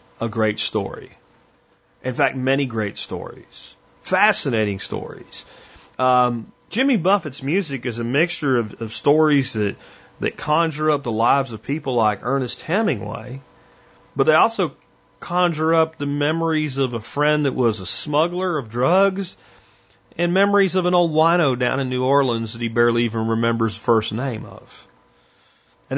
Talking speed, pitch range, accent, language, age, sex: 155 wpm, 115-160 Hz, American, English, 40-59, male